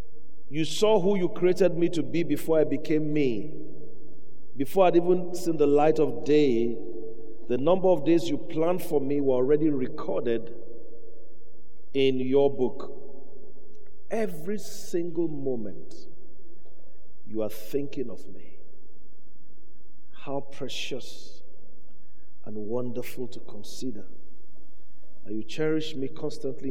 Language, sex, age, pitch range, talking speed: English, male, 50-69, 120-155 Hz, 120 wpm